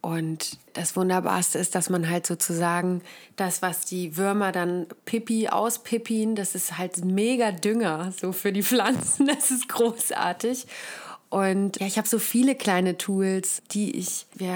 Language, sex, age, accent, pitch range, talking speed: German, female, 30-49, German, 180-220 Hz, 155 wpm